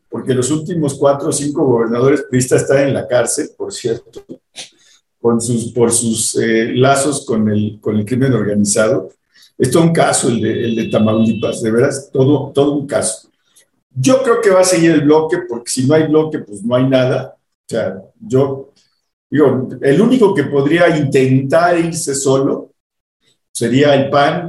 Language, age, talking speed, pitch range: Spanish, 50-69, 180 wpm, 120-155 Hz